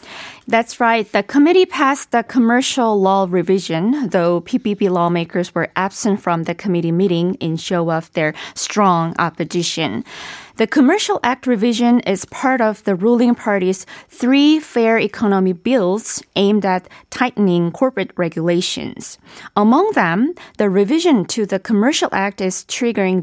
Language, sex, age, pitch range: Korean, female, 20-39, 175-240 Hz